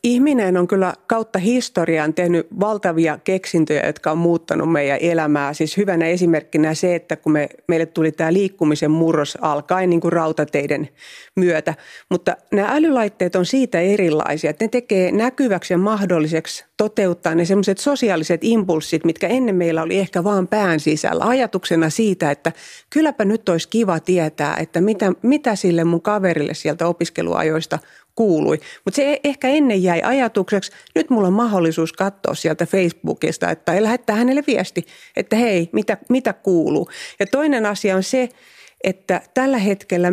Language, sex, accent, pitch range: Finnish, female, native, 170-220 Hz